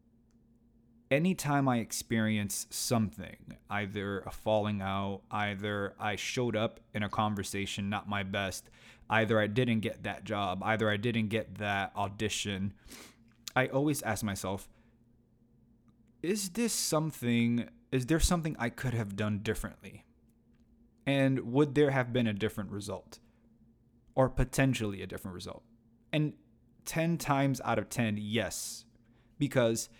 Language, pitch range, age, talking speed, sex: English, 110-125 Hz, 20-39, 135 wpm, male